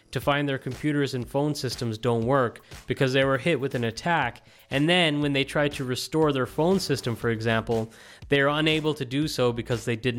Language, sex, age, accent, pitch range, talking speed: English, male, 30-49, American, 115-140 Hz, 220 wpm